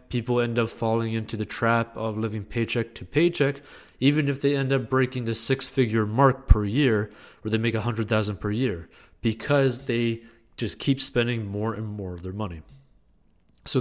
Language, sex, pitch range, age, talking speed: English, male, 105-125 Hz, 30-49, 180 wpm